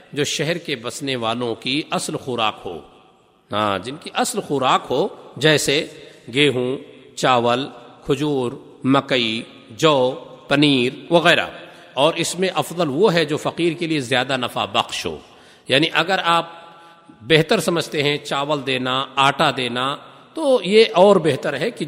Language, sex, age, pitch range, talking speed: Urdu, male, 50-69, 140-180 Hz, 150 wpm